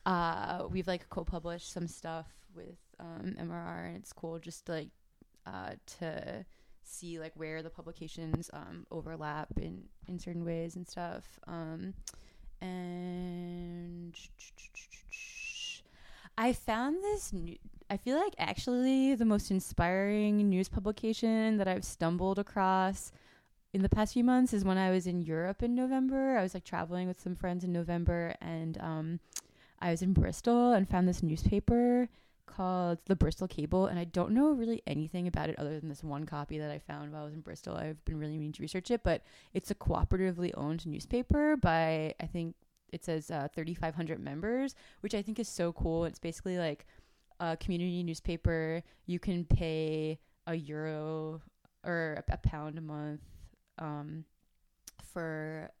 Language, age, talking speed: English, 20-39, 160 wpm